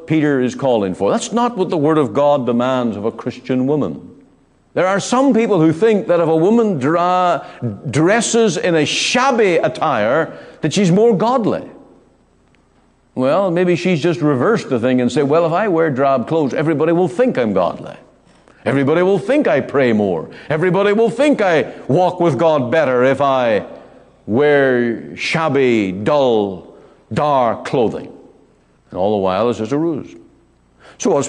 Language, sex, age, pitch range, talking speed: English, male, 50-69, 120-180 Hz, 165 wpm